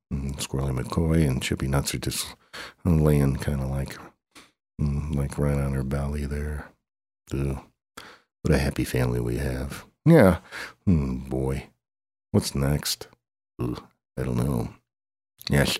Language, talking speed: English, 135 wpm